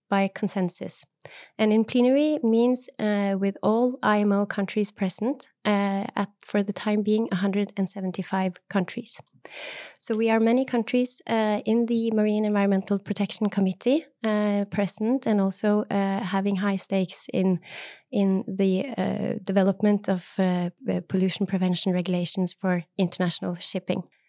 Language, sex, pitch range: English, female, 195-230 Hz